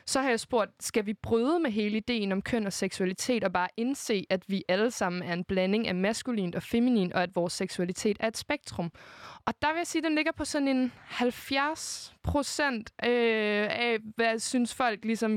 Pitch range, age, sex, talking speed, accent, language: 200-240 Hz, 20-39, female, 205 wpm, native, Danish